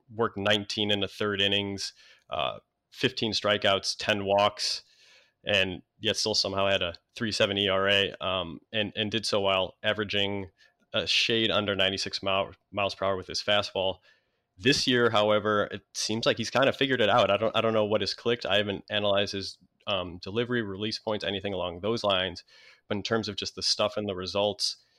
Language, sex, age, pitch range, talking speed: English, male, 20-39, 95-110 Hz, 190 wpm